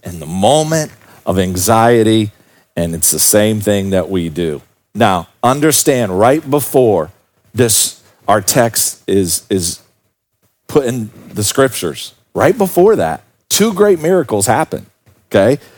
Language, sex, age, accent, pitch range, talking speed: English, male, 40-59, American, 95-125 Hz, 130 wpm